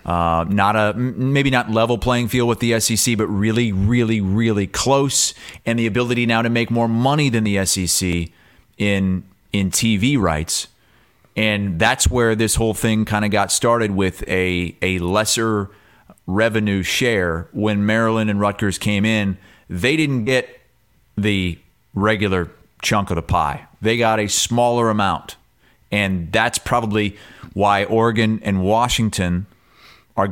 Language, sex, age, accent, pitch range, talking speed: English, male, 30-49, American, 95-120 Hz, 150 wpm